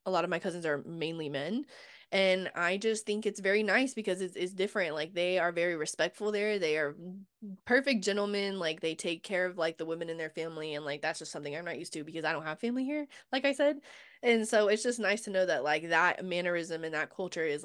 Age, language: 20-39, English